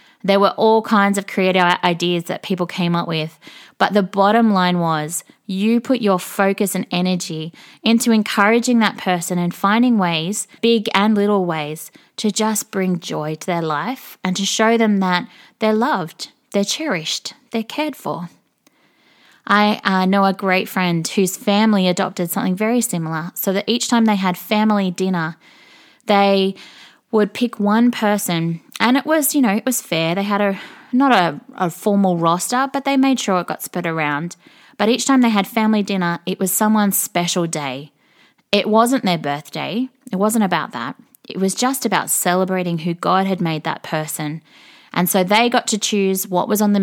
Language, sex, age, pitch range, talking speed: English, female, 20-39, 175-220 Hz, 185 wpm